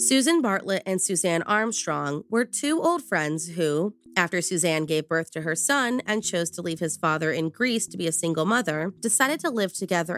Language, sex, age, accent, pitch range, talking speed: English, female, 20-39, American, 170-235 Hz, 200 wpm